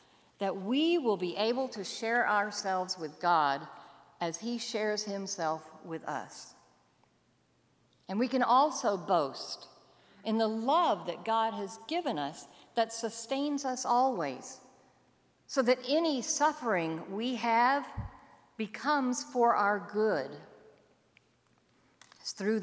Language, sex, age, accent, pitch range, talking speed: English, female, 50-69, American, 190-255 Hz, 115 wpm